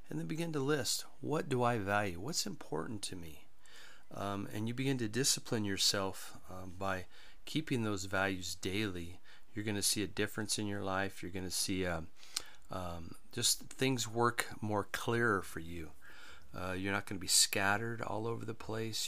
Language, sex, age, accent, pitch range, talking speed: English, male, 40-59, American, 95-110 Hz, 180 wpm